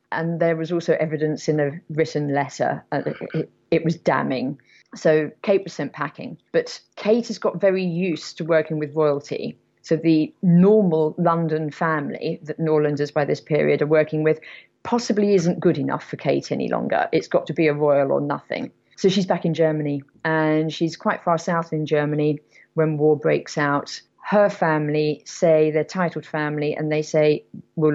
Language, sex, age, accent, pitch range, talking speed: English, female, 40-59, British, 155-180 Hz, 180 wpm